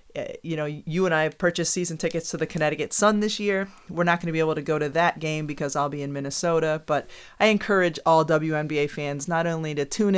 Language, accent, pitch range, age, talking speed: English, American, 140-165 Hz, 30-49, 240 wpm